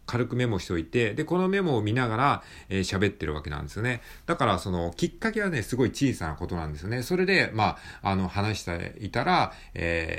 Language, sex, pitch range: Japanese, male, 85-125 Hz